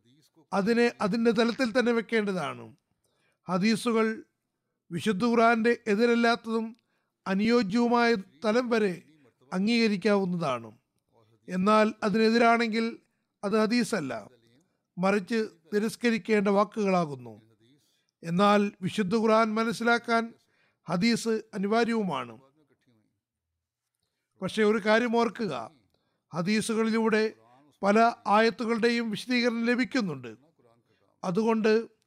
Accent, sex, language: native, male, Malayalam